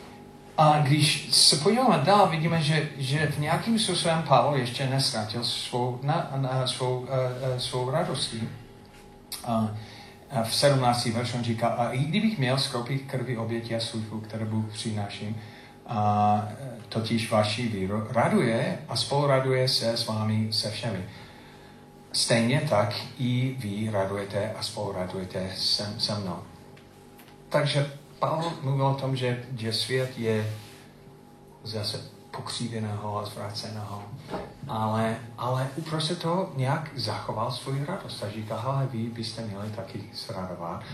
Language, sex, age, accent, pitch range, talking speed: Czech, male, 40-59, native, 110-135 Hz, 130 wpm